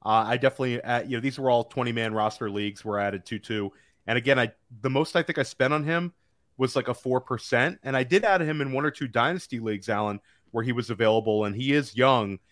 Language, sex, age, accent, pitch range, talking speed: English, male, 30-49, American, 110-140 Hz, 255 wpm